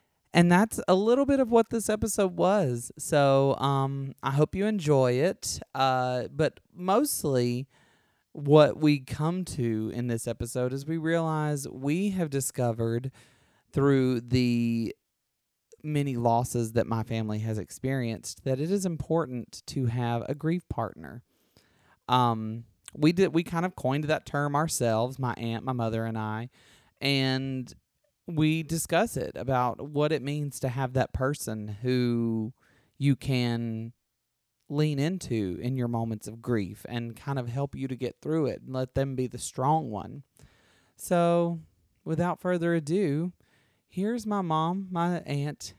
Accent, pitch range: American, 120-160 Hz